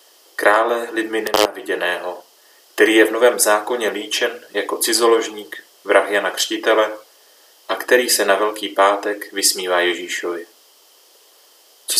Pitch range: 105-120 Hz